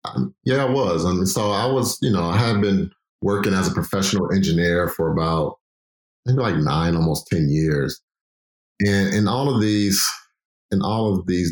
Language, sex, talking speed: English, male, 190 wpm